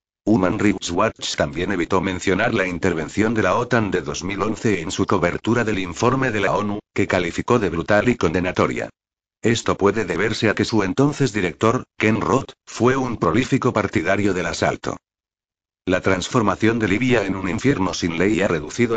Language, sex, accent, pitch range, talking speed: Spanish, male, Spanish, 90-115 Hz, 170 wpm